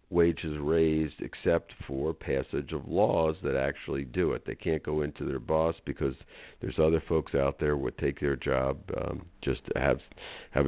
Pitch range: 80-95 Hz